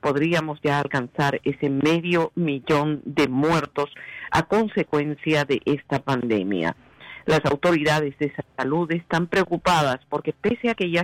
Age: 50-69